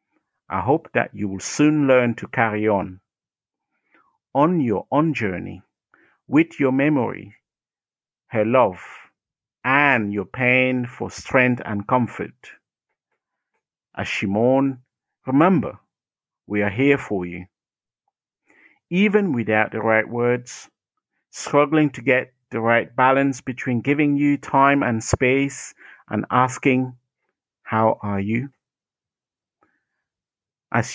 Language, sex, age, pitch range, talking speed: English, male, 50-69, 110-140 Hz, 110 wpm